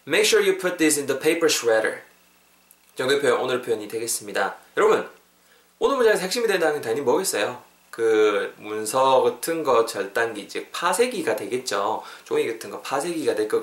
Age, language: 20-39, Korean